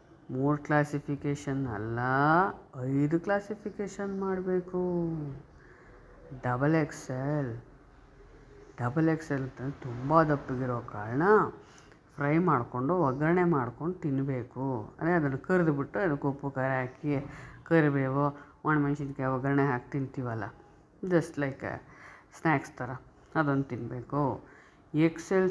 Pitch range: 130-170 Hz